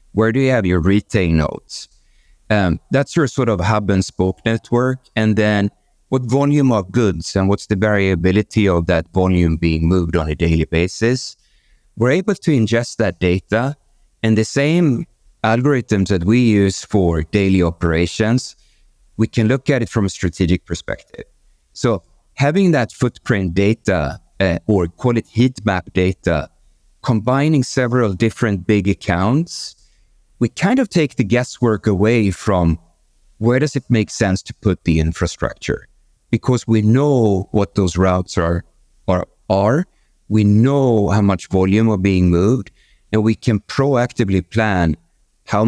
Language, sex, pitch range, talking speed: English, male, 95-120 Hz, 155 wpm